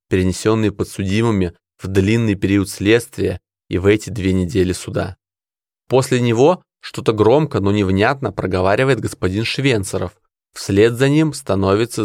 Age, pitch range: 20-39, 95-130 Hz